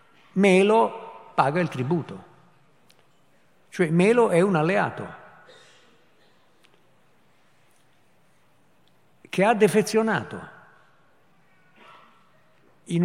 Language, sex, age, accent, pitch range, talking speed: Italian, male, 50-69, native, 135-200 Hz, 60 wpm